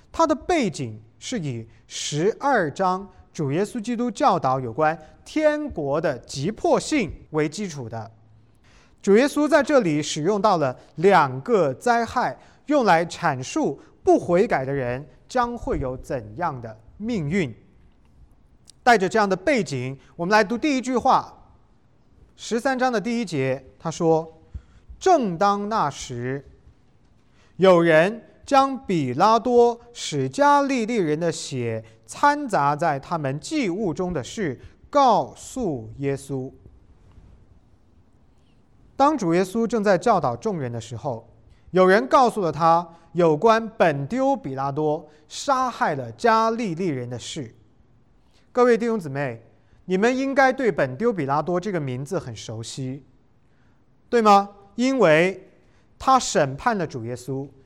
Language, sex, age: English, male, 30-49